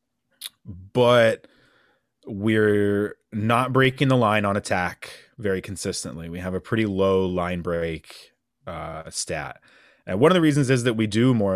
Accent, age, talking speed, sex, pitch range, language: American, 30-49, 150 wpm, male, 90-120 Hz, English